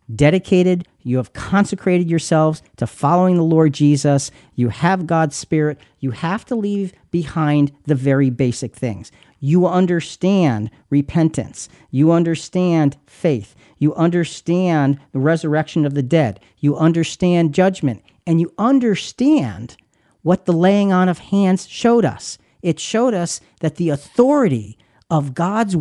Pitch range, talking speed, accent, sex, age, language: 140-200 Hz, 135 wpm, American, male, 40-59, English